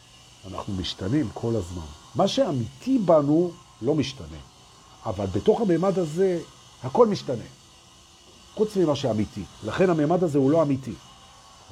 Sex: male